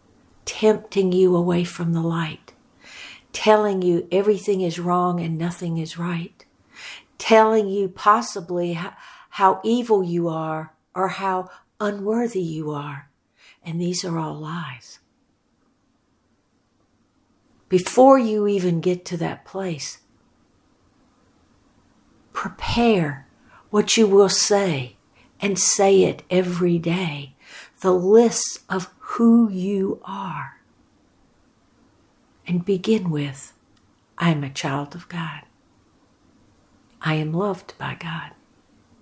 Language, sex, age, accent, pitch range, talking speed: English, female, 60-79, American, 155-190 Hz, 110 wpm